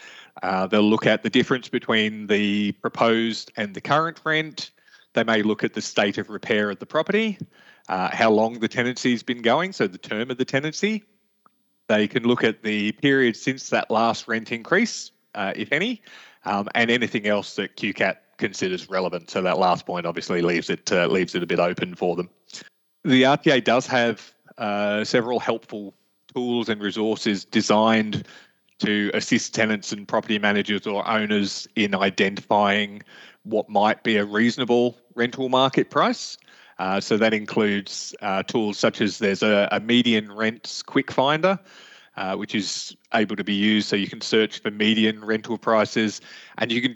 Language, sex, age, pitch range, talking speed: English, male, 30-49, 105-120 Hz, 175 wpm